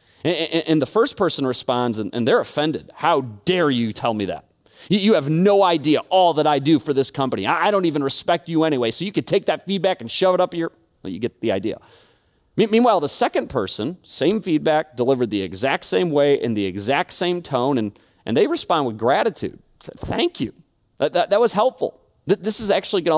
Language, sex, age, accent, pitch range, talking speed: English, male, 30-49, American, 135-195 Hz, 205 wpm